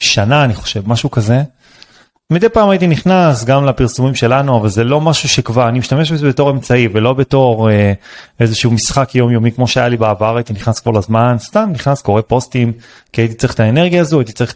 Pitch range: 110-140 Hz